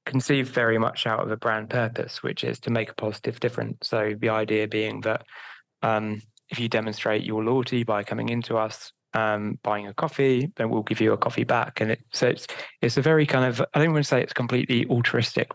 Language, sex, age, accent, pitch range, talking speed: English, male, 20-39, British, 110-125 Hz, 230 wpm